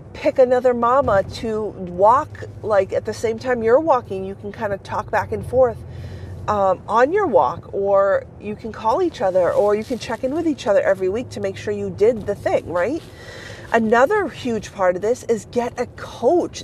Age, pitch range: 40-59, 195-270 Hz